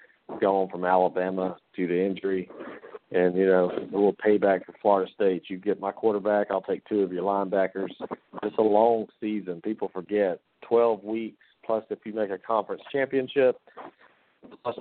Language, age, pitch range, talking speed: English, 40-59, 95-105 Hz, 165 wpm